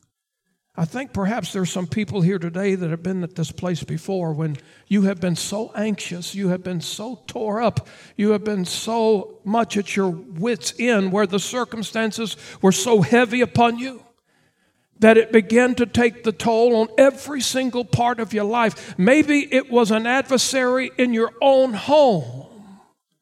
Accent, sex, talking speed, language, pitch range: American, male, 175 wpm, English, 205-260 Hz